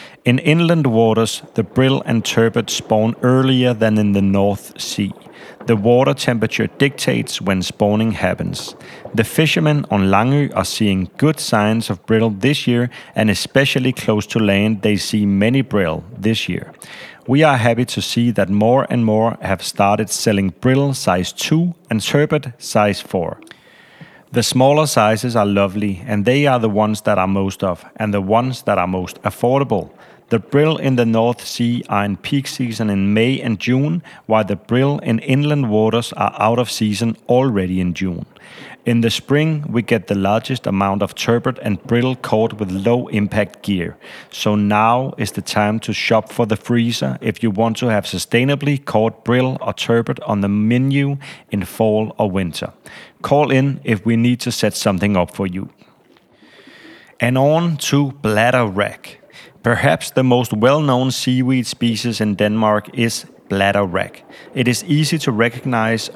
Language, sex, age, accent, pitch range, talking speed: Danish, male, 40-59, native, 105-130 Hz, 170 wpm